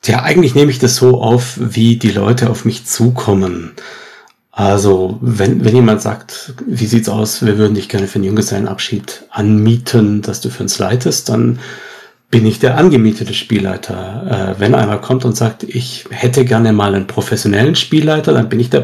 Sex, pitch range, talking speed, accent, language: male, 105-125 Hz, 185 wpm, German, German